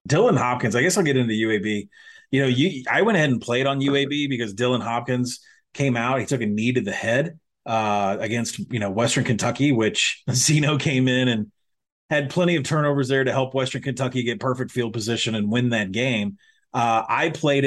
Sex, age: male, 30-49